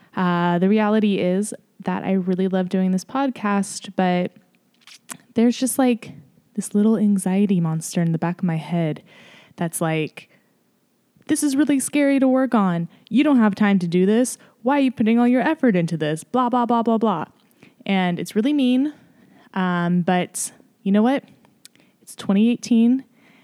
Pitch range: 185-235 Hz